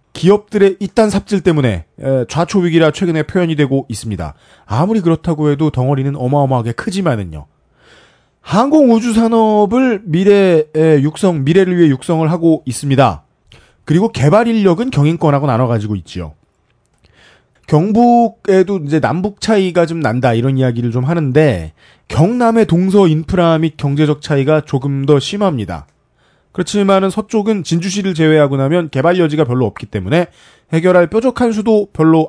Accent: native